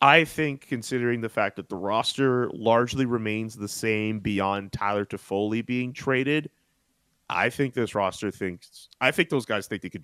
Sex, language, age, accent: male, English, 30-49, American